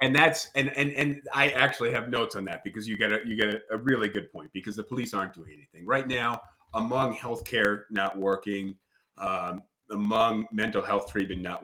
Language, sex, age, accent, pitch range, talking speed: English, male, 40-59, American, 100-120 Hz, 205 wpm